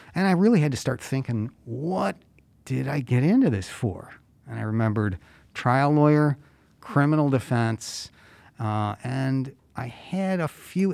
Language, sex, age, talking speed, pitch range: English, male, 50-69, 150 wpm, 110-140 Hz